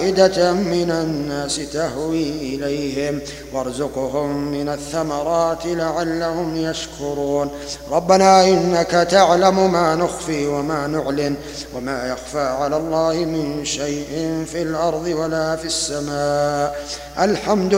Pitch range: 145-170 Hz